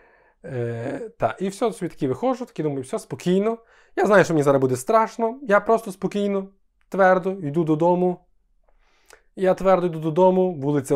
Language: Ukrainian